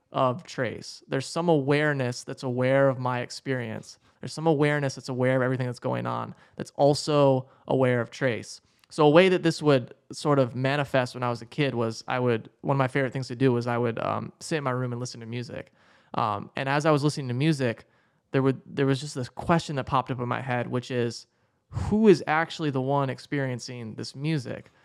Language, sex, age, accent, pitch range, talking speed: English, male, 20-39, American, 125-150 Hz, 220 wpm